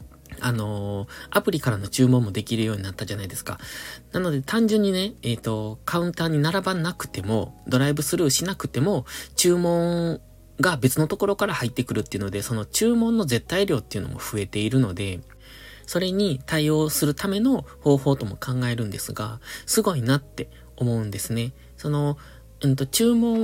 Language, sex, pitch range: Japanese, male, 110-165 Hz